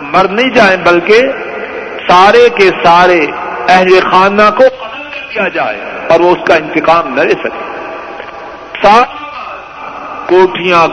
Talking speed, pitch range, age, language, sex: 125 wpm, 165-220 Hz, 50-69, Urdu, male